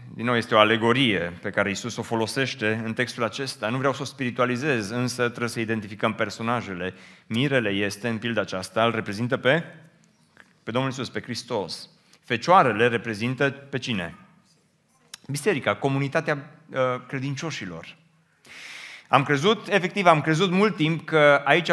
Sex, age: male, 30-49